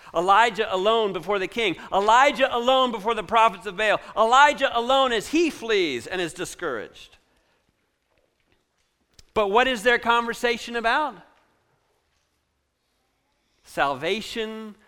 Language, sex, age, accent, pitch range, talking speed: English, male, 50-69, American, 165-235 Hz, 110 wpm